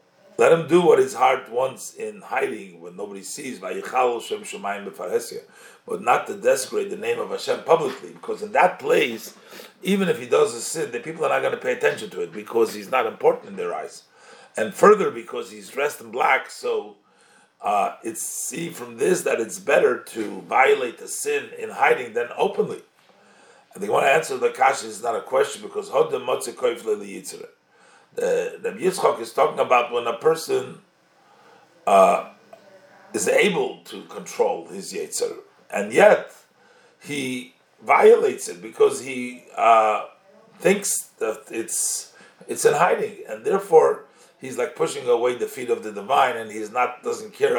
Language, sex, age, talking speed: English, male, 50-69, 165 wpm